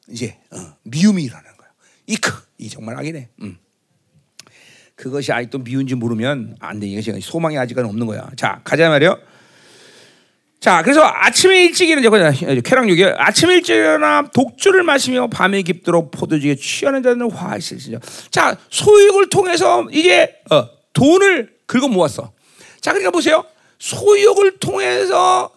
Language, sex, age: Korean, male, 40-59